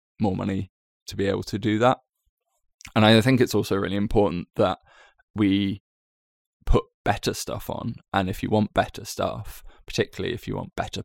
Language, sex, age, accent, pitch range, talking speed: English, male, 20-39, British, 95-105 Hz, 175 wpm